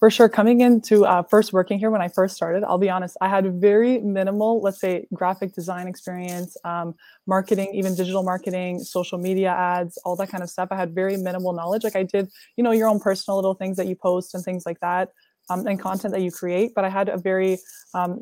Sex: female